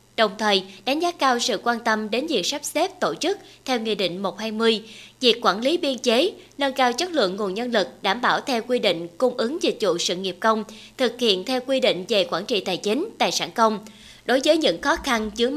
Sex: female